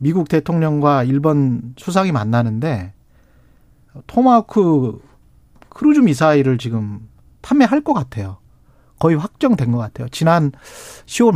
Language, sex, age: Korean, male, 40-59